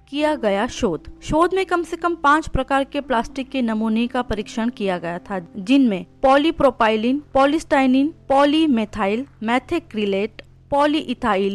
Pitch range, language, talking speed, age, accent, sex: 220-290 Hz, Hindi, 135 wpm, 20-39, native, female